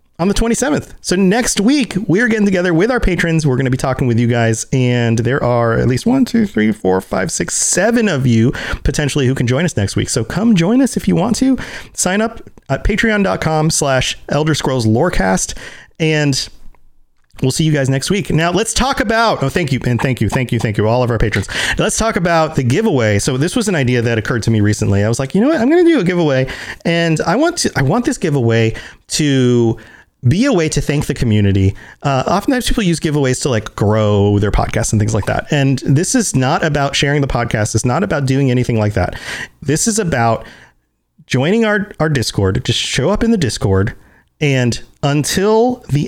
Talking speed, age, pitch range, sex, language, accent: 225 wpm, 30-49, 120-180 Hz, male, English, American